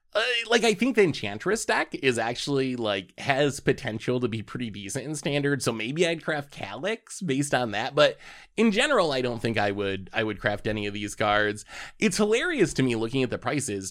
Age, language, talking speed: 20-39, English, 210 wpm